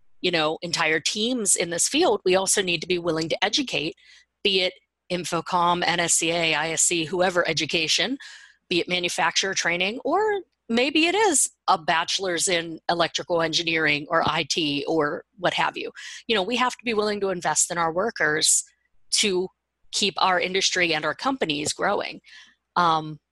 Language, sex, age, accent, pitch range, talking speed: English, female, 40-59, American, 170-215 Hz, 160 wpm